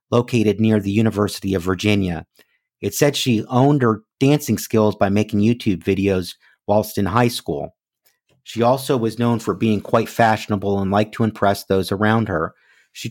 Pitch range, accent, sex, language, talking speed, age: 100-120 Hz, American, male, English, 170 wpm, 40-59